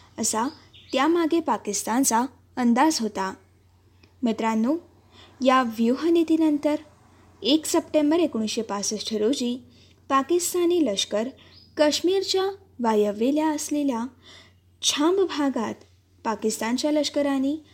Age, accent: 20-39, native